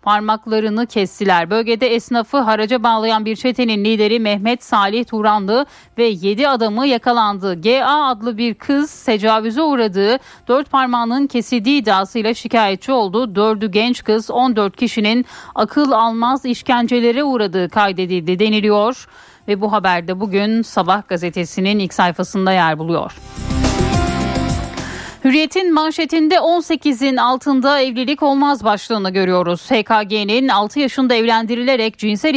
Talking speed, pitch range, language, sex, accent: 115 wpm, 210-260 Hz, Turkish, female, native